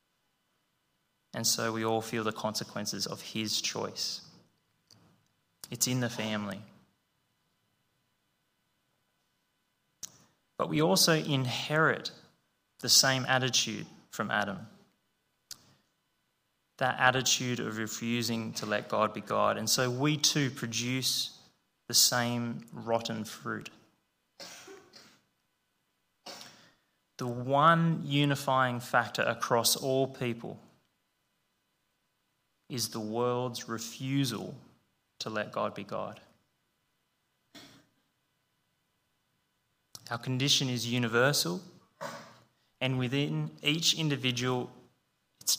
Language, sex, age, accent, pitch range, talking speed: English, male, 20-39, Australian, 115-140 Hz, 85 wpm